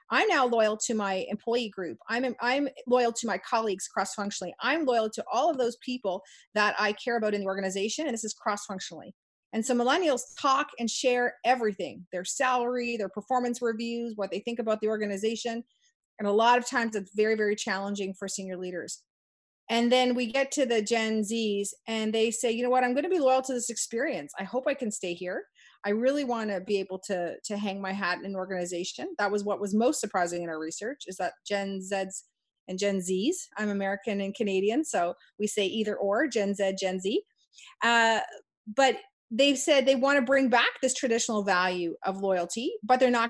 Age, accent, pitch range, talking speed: 40-59, American, 195-255 Hz, 210 wpm